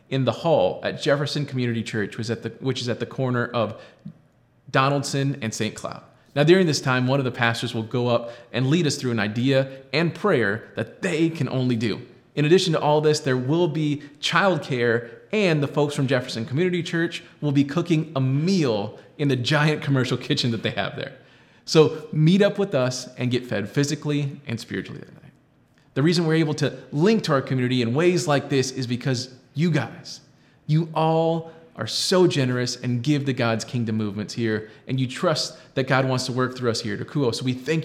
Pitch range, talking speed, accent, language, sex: 120-150 Hz, 205 wpm, American, English, male